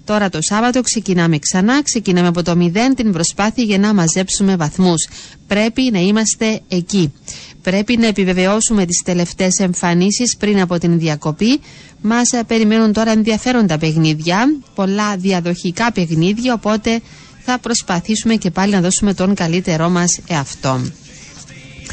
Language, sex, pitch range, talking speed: Greek, female, 185-220 Hz, 130 wpm